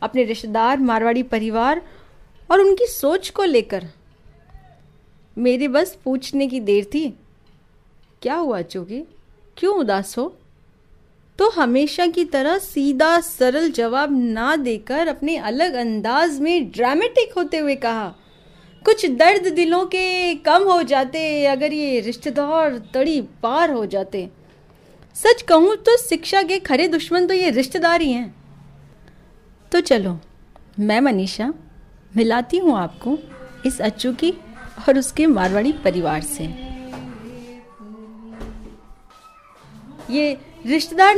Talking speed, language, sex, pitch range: 115 wpm, Hindi, female, 230-340 Hz